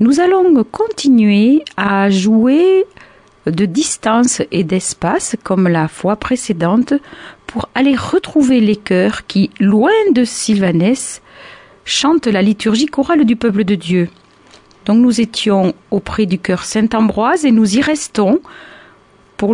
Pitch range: 195-260 Hz